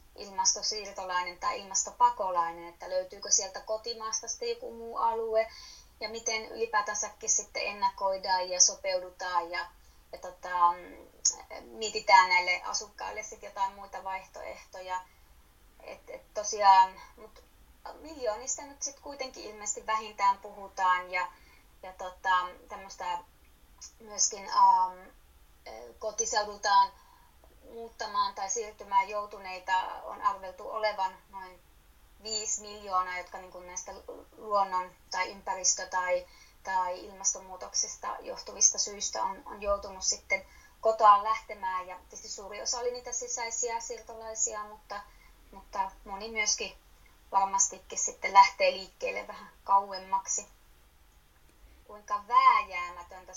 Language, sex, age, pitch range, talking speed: Finnish, female, 20-39, 185-230 Hz, 100 wpm